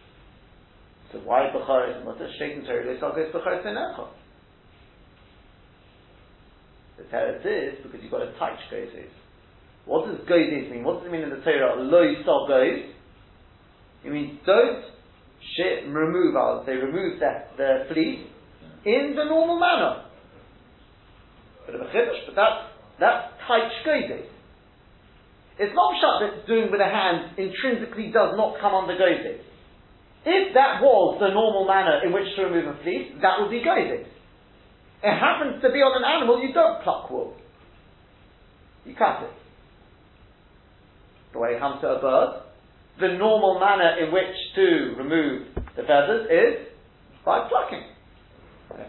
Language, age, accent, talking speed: English, 40-59, British, 145 wpm